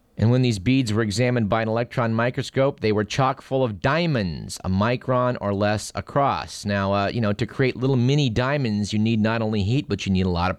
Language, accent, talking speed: English, American, 225 wpm